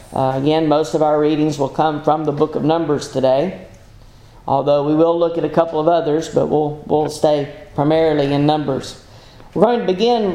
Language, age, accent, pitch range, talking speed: English, 40-59, American, 145-185 Hz, 195 wpm